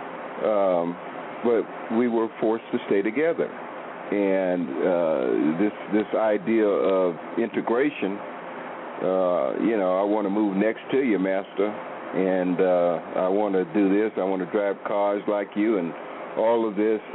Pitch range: 90-110 Hz